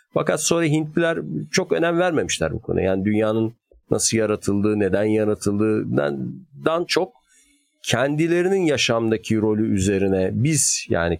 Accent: native